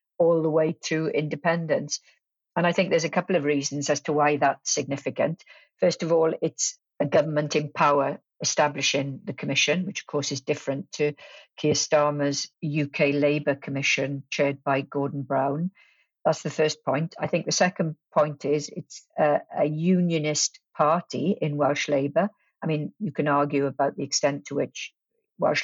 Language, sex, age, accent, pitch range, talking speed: English, female, 50-69, British, 145-165 Hz, 170 wpm